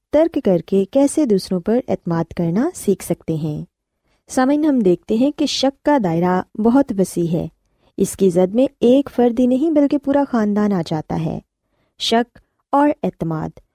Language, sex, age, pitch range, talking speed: Urdu, female, 20-39, 185-265 Hz, 165 wpm